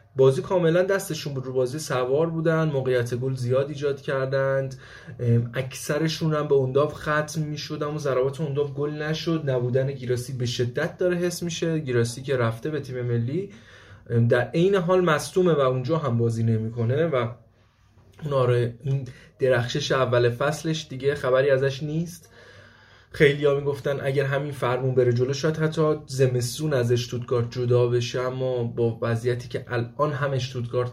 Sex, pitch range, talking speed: male, 120-145 Hz, 145 wpm